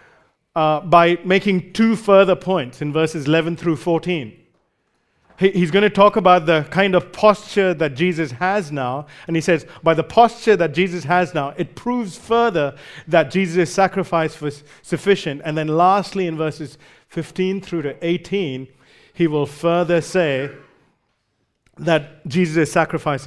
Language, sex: English, male